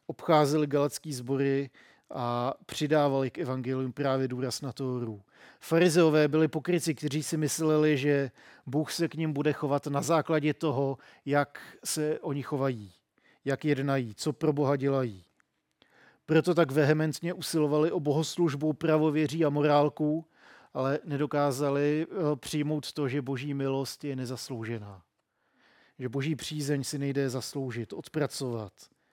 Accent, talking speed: native, 130 wpm